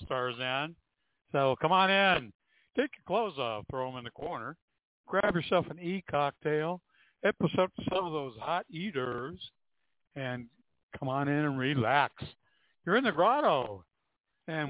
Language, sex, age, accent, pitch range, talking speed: English, male, 60-79, American, 125-175 Hz, 145 wpm